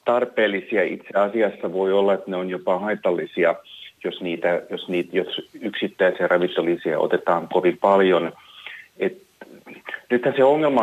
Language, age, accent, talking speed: Finnish, 30-49, native, 135 wpm